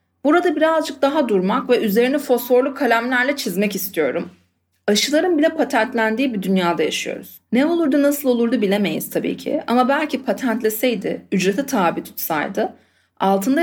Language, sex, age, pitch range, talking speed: Turkish, female, 40-59, 215-295 Hz, 130 wpm